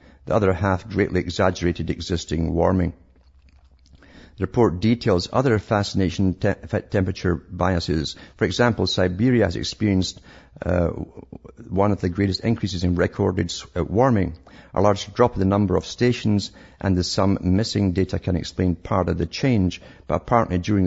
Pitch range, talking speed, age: 85-105 Hz, 150 wpm, 50-69